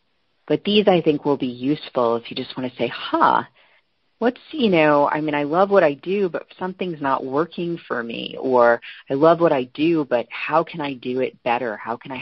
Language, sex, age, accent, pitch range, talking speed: English, female, 40-59, American, 120-145 Hz, 225 wpm